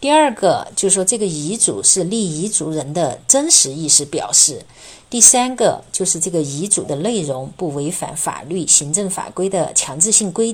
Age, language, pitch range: 50-69, Chinese, 155-220 Hz